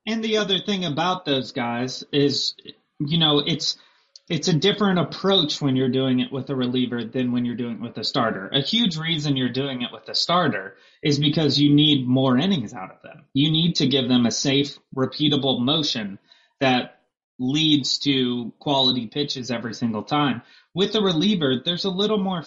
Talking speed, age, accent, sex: 190 wpm, 30-49, American, male